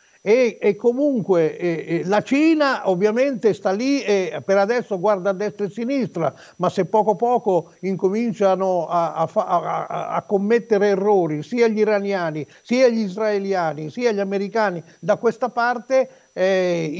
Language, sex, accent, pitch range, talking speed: Italian, male, native, 170-220 Hz, 150 wpm